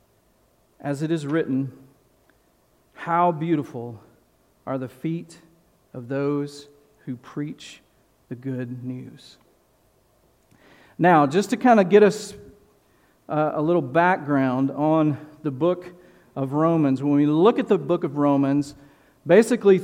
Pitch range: 150-195 Hz